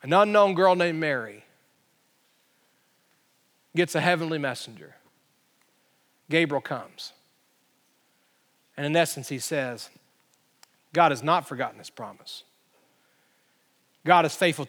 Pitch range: 155-200 Hz